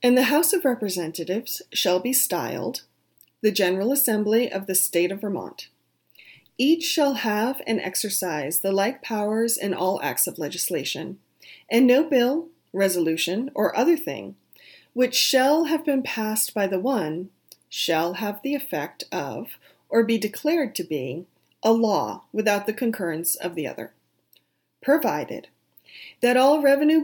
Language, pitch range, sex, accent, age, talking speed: English, 195-265 Hz, female, American, 30-49, 145 wpm